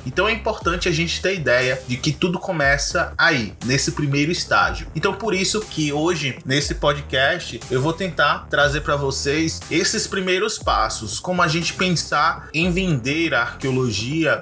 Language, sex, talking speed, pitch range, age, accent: Portuguese, male, 160 wpm, 120-160 Hz, 20-39, Brazilian